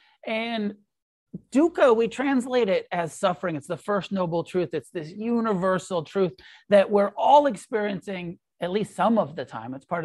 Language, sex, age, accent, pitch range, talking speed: English, male, 40-59, American, 155-200 Hz, 165 wpm